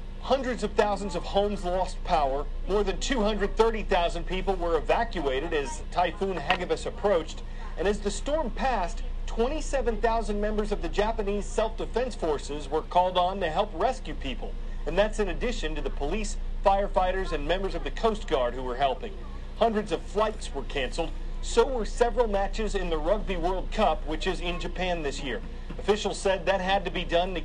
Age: 40-59